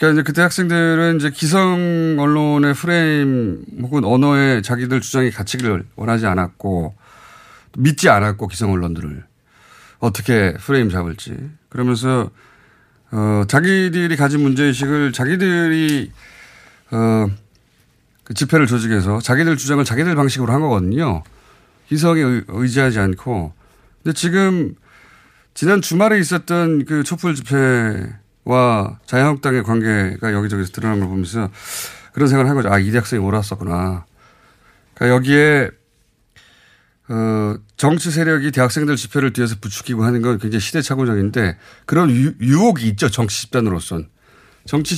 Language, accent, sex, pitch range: Korean, native, male, 105-145 Hz